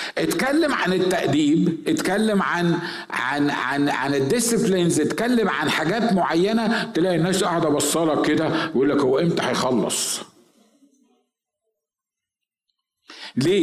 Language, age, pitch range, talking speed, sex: Arabic, 50-69, 165-230 Hz, 105 wpm, male